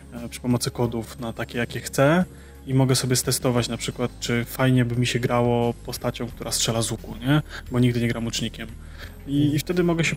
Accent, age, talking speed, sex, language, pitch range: native, 20-39, 200 wpm, male, Polish, 120-135 Hz